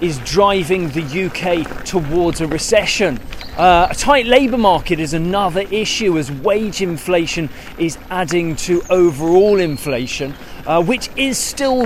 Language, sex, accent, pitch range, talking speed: English, male, British, 155-205 Hz, 135 wpm